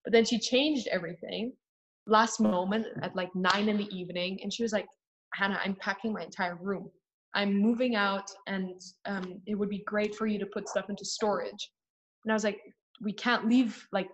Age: 20-39